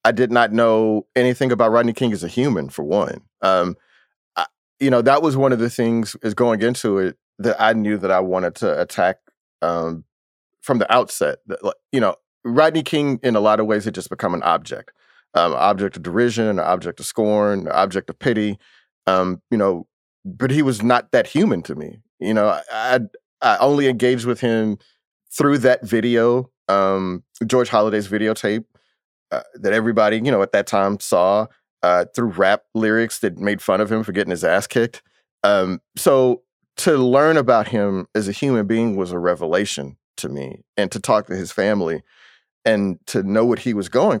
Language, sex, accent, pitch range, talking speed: English, male, American, 100-130 Hz, 195 wpm